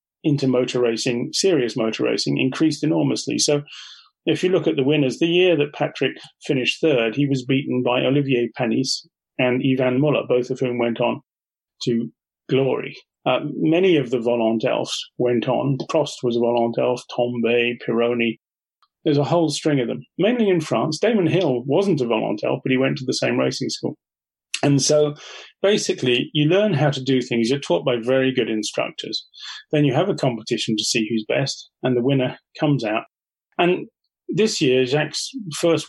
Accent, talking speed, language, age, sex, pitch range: British, 175 wpm, English, 40-59, male, 120-150 Hz